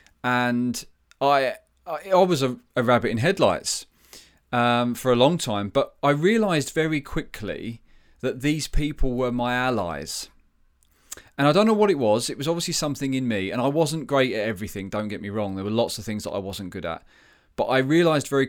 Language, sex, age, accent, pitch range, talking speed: English, male, 30-49, British, 105-140 Hz, 205 wpm